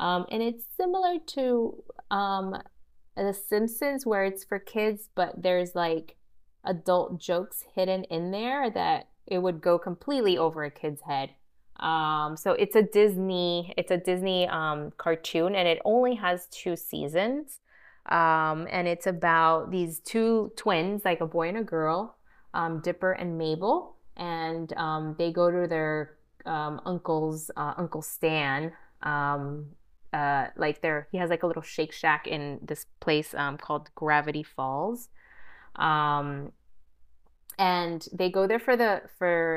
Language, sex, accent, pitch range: English, female, American, 155-195 Hz